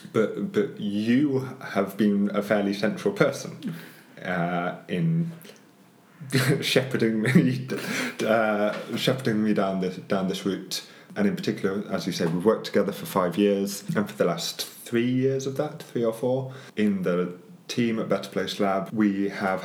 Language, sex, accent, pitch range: German, male, British, 100-130 Hz